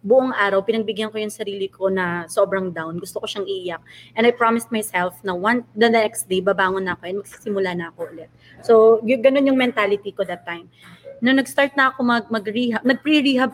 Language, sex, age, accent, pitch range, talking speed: English, female, 20-39, Filipino, 195-245 Hz, 205 wpm